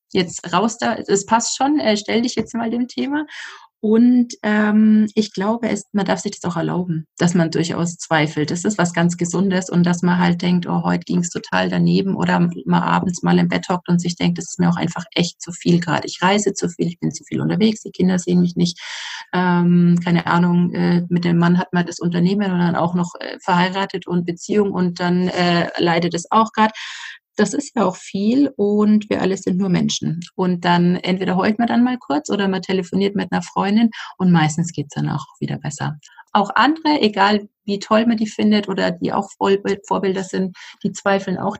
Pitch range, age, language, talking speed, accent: 170-205 Hz, 30-49, German, 215 wpm, German